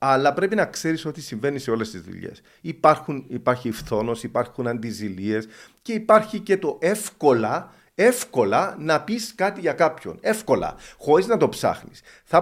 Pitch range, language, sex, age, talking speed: 115-175 Hz, Greek, male, 50-69, 155 wpm